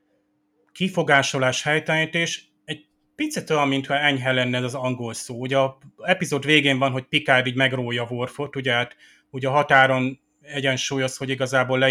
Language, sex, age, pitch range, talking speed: Hungarian, male, 30-49, 125-150 Hz, 155 wpm